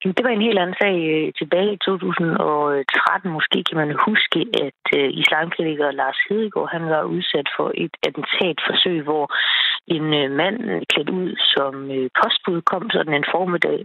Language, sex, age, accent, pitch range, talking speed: Danish, female, 30-49, native, 155-190 Hz, 145 wpm